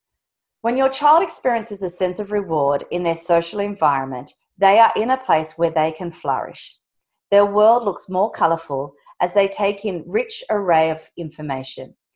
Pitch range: 160-215 Hz